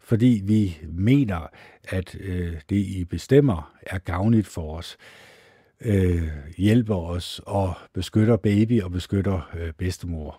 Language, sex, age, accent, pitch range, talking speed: Danish, male, 60-79, native, 95-120 Hz, 125 wpm